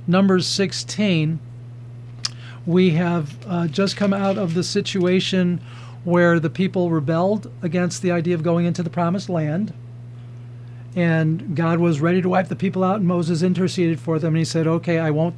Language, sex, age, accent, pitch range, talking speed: English, male, 50-69, American, 150-180 Hz, 170 wpm